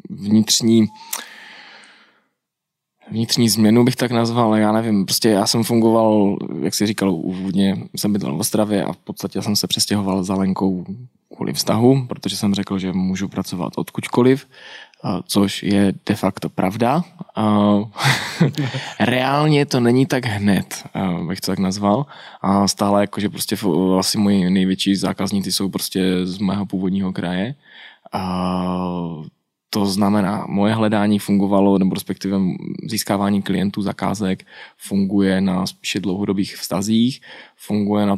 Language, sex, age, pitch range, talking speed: Slovak, male, 20-39, 95-110 Hz, 130 wpm